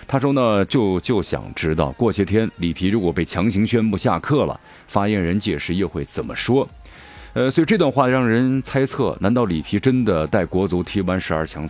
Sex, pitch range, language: male, 80-105 Hz, Japanese